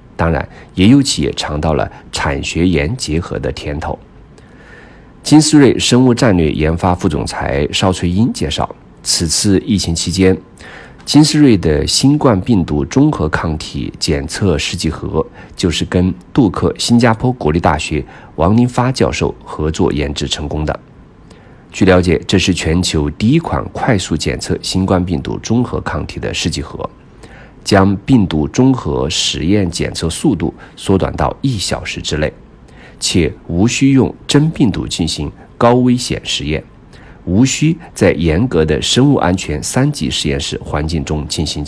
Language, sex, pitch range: Chinese, male, 80-120 Hz